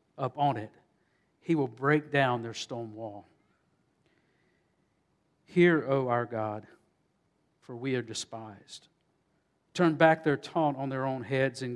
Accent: American